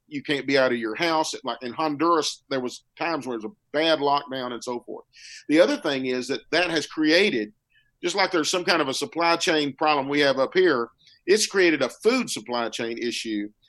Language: English